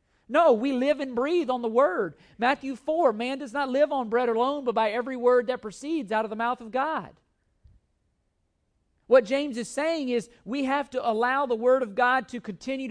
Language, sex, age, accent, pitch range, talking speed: English, male, 40-59, American, 225-270 Hz, 205 wpm